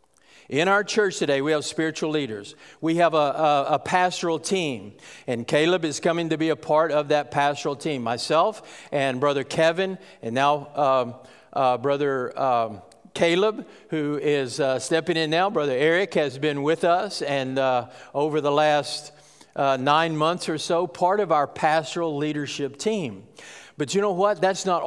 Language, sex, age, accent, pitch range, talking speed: English, male, 50-69, American, 145-180 Hz, 170 wpm